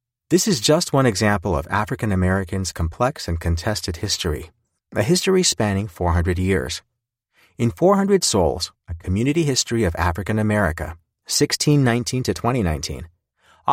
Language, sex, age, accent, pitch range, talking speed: English, male, 30-49, American, 85-120 Hz, 120 wpm